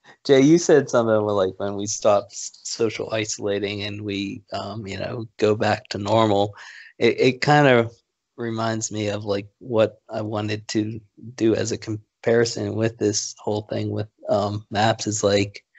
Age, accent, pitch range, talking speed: 20-39, American, 105-115 Hz, 165 wpm